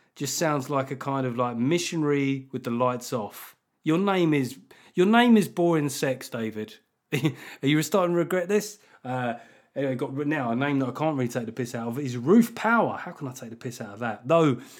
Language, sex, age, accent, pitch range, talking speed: English, male, 30-49, British, 125-180 Hz, 225 wpm